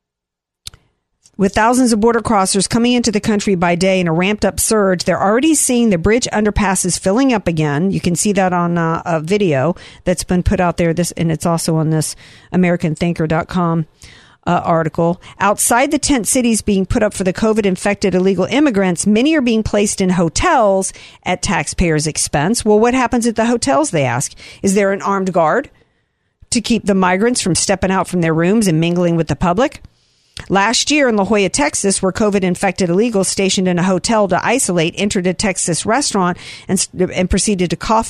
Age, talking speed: 50-69, 190 wpm